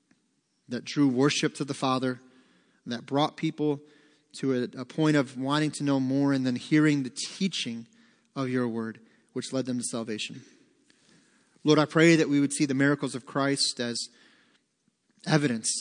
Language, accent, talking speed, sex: English, American, 165 wpm, male